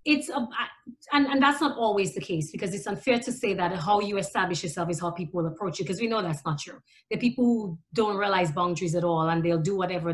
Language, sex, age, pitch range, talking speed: English, female, 30-49, 190-240 Hz, 255 wpm